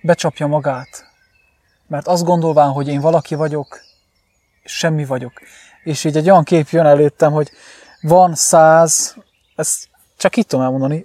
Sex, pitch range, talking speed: male, 150-185 Hz, 140 wpm